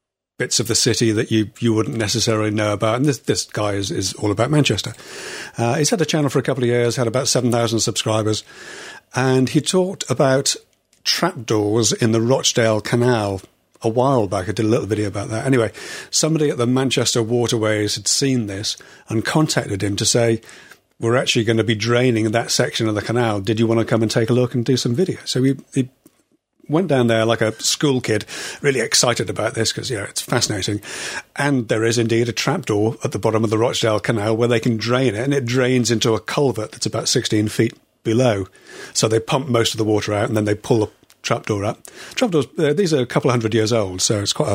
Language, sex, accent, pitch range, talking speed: English, male, British, 110-135 Hz, 225 wpm